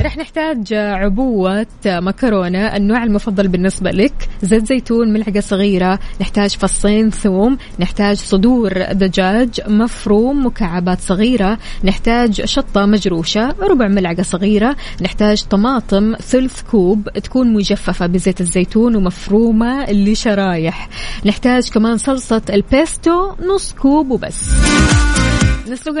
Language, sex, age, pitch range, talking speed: Arabic, female, 20-39, 190-235 Hz, 105 wpm